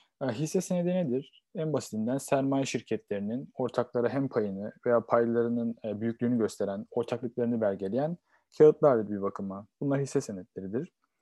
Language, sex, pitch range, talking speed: Turkish, male, 115-145 Hz, 120 wpm